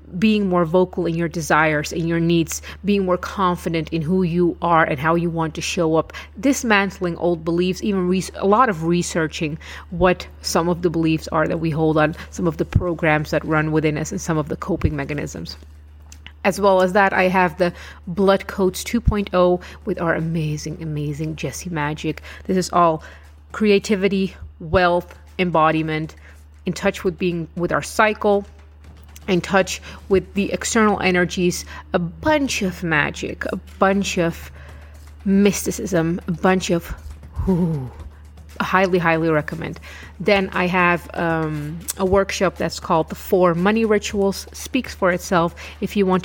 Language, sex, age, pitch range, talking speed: English, female, 30-49, 155-190 Hz, 160 wpm